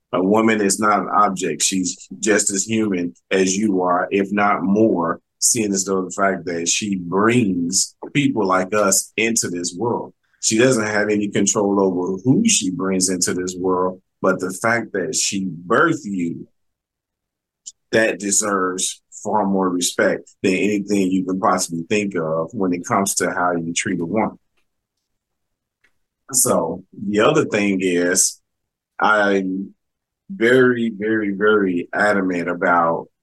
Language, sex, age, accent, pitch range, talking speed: English, male, 30-49, American, 95-110 Hz, 145 wpm